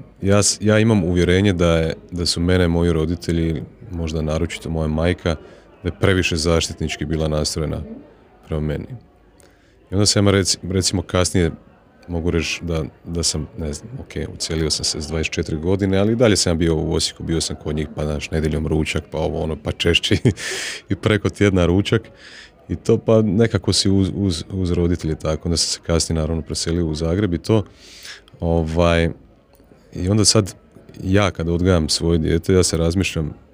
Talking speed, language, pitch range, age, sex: 180 wpm, Croatian, 80-95 Hz, 30-49, male